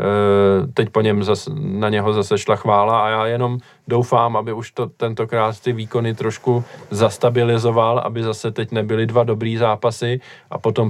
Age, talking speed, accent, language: 20-39, 165 wpm, native, Czech